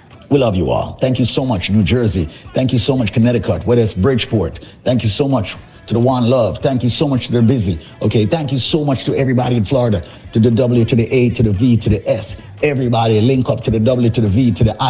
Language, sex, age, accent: English, male, 50-69, American